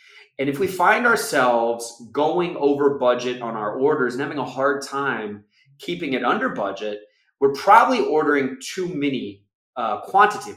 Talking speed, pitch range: 155 wpm, 120-160 Hz